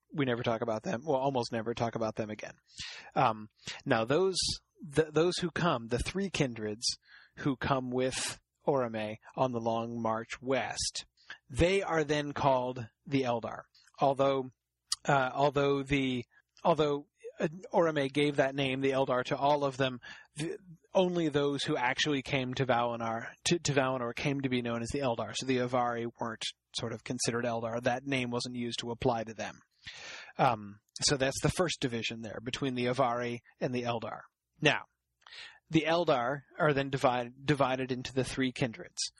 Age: 30-49